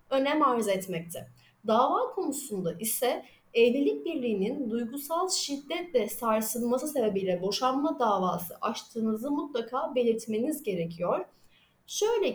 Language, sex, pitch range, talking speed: Turkish, female, 215-300 Hz, 90 wpm